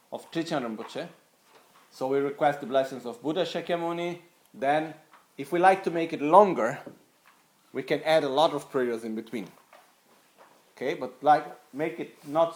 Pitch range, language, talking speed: 120-155 Hz, Italian, 150 wpm